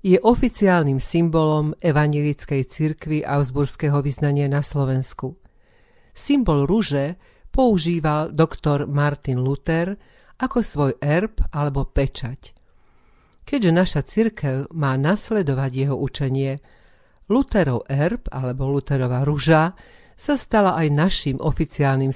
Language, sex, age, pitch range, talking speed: Slovak, female, 50-69, 140-170 Hz, 100 wpm